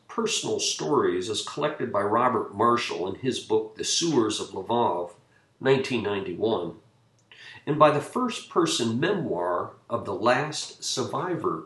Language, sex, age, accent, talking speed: English, male, 50-69, American, 125 wpm